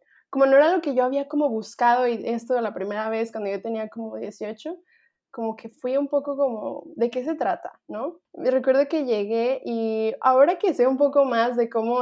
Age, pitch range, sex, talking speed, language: 20-39, 210-255 Hz, female, 210 wpm, Spanish